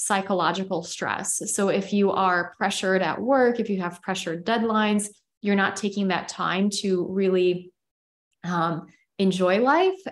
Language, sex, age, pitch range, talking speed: English, female, 20-39, 170-200 Hz, 140 wpm